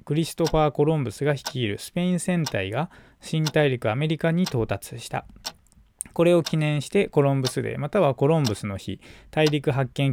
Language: Japanese